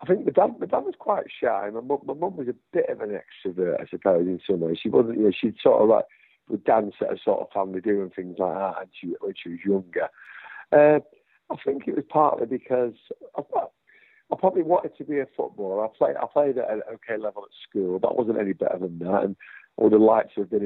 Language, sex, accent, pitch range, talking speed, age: English, male, British, 100-150 Hz, 250 wpm, 50-69